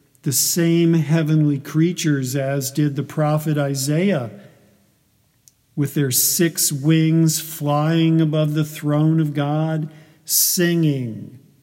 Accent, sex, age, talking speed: American, male, 50-69, 105 wpm